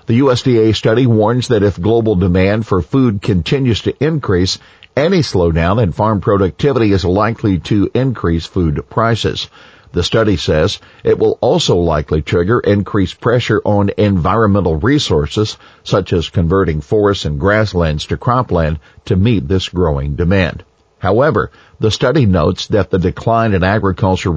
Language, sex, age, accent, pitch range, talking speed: English, male, 50-69, American, 90-120 Hz, 145 wpm